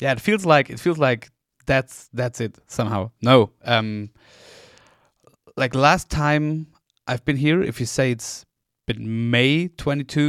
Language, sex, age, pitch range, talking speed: English, male, 30-49, 115-140 Hz, 155 wpm